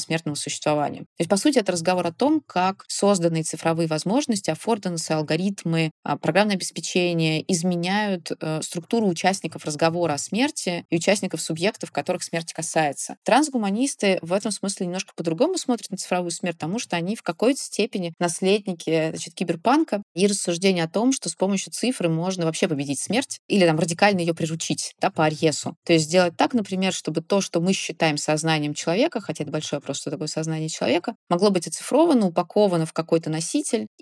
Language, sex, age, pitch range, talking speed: Russian, female, 20-39, 160-195 Hz, 170 wpm